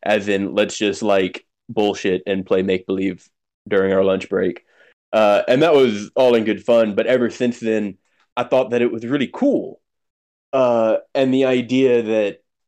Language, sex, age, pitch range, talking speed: English, male, 20-39, 95-115 Hz, 175 wpm